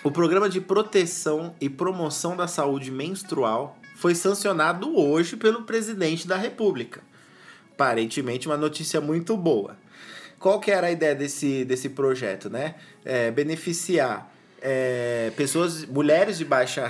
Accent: Brazilian